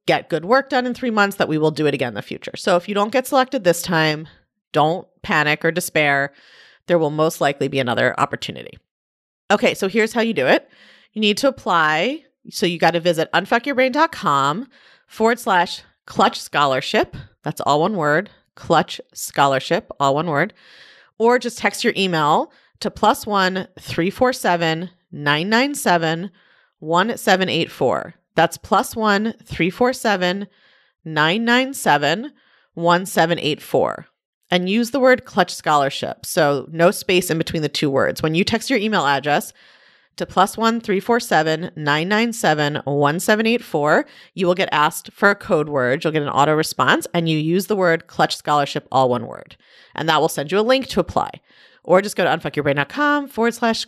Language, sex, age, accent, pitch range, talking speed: English, female, 30-49, American, 155-230 Hz, 175 wpm